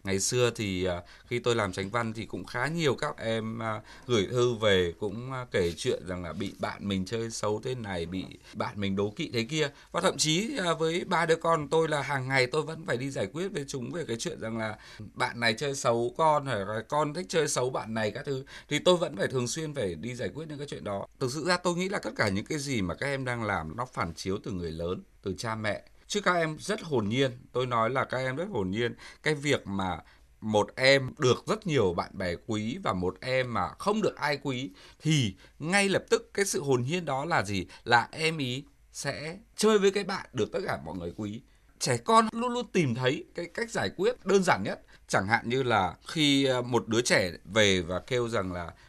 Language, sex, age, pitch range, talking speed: Vietnamese, male, 20-39, 110-155 Hz, 240 wpm